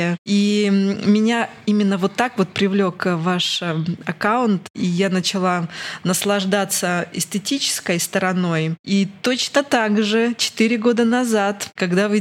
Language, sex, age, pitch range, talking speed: Russian, female, 20-39, 180-210 Hz, 120 wpm